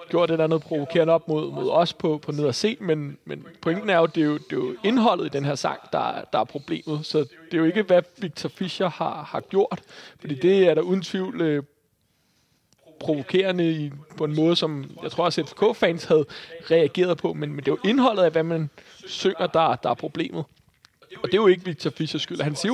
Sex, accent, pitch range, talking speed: male, native, 155-185 Hz, 230 wpm